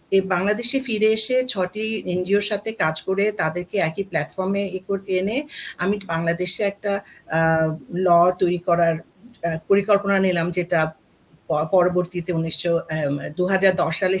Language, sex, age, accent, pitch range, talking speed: Bengali, female, 50-69, native, 170-215 Hz, 105 wpm